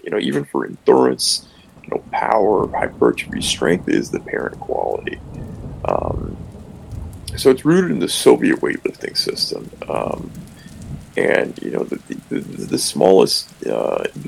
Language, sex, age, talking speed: English, male, 30-49, 135 wpm